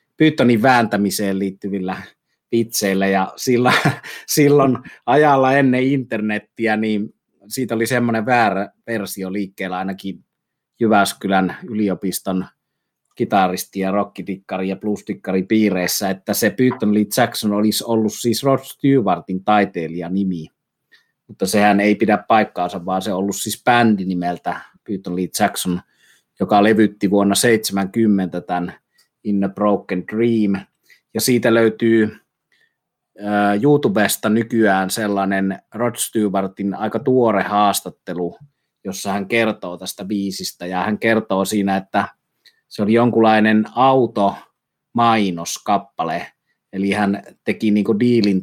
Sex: male